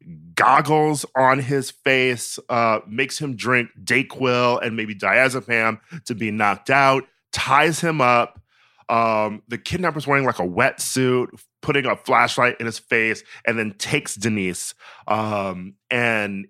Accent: American